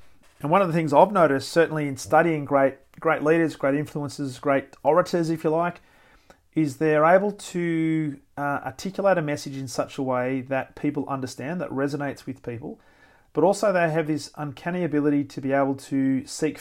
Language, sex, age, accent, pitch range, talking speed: English, male, 30-49, Australian, 135-160 Hz, 185 wpm